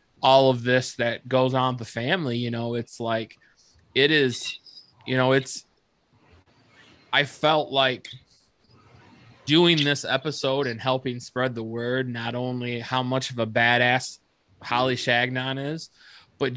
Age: 20-39